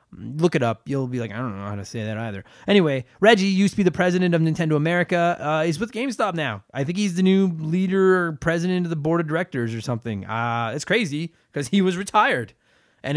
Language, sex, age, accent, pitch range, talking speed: English, male, 20-39, American, 125-165 Hz, 235 wpm